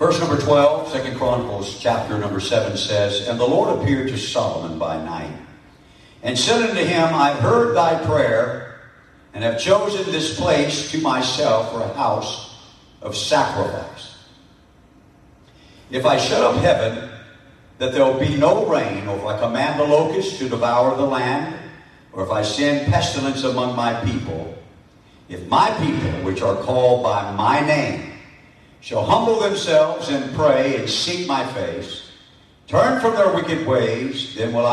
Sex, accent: male, American